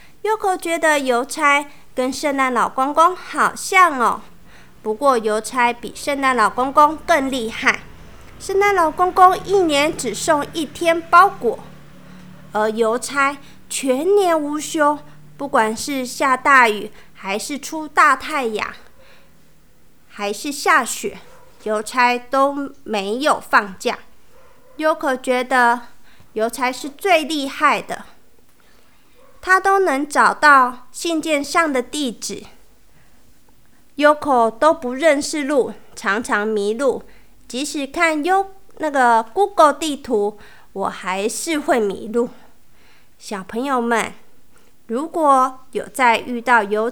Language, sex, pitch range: Chinese, female, 240-315 Hz